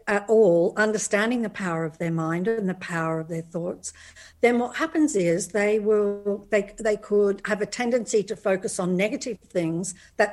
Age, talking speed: 60-79, 185 wpm